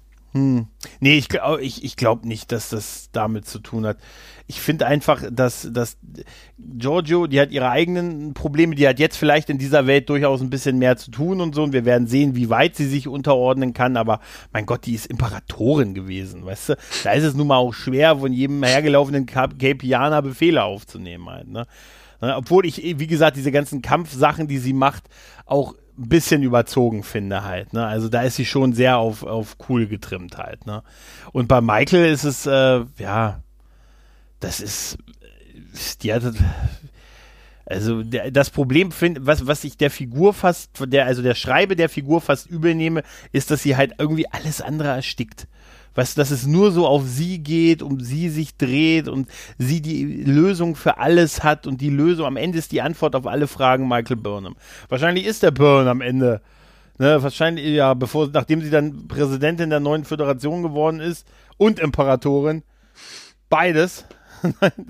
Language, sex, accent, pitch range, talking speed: German, male, German, 120-155 Hz, 180 wpm